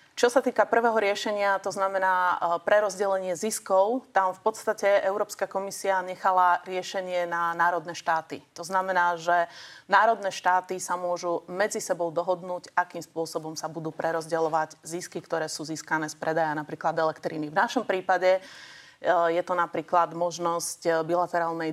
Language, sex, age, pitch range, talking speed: Slovak, female, 30-49, 160-190 Hz, 140 wpm